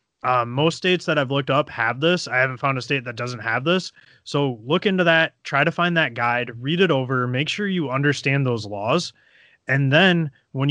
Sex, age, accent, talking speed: male, 20-39, American, 220 wpm